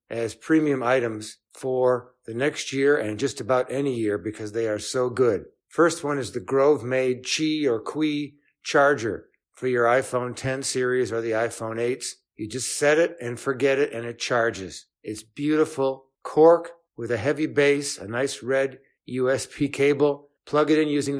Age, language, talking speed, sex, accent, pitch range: 60-79, English, 175 wpm, male, American, 120-145 Hz